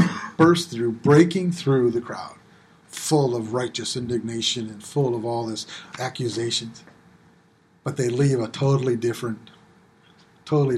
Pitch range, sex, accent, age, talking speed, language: 120-170 Hz, male, American, 40-59, 120 wpm, English